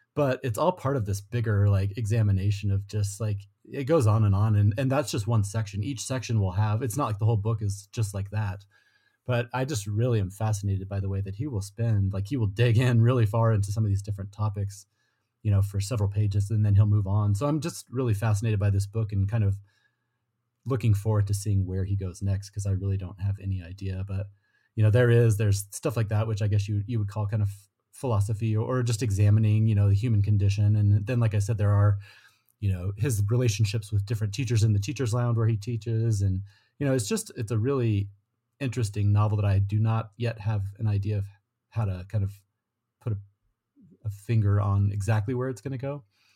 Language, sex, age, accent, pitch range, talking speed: English, male, 30-49, American, 100-115 Hz, 235 wpm